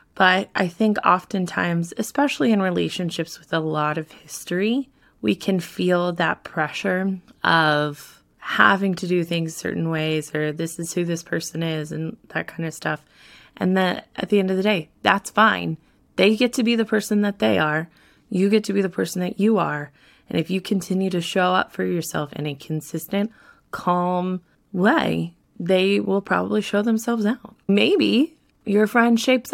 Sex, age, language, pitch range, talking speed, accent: female, 20-39, English, 165-200 Hz, 180 wpm, American